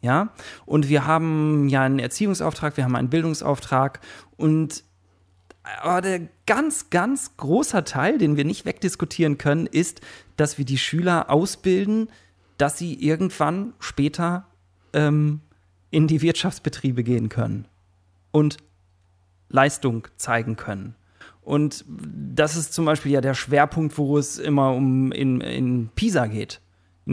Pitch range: 110-155 Hz